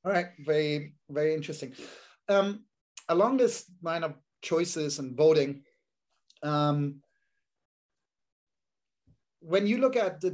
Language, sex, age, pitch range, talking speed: English, male, 30-49, 140-160 Hz, 110 wpm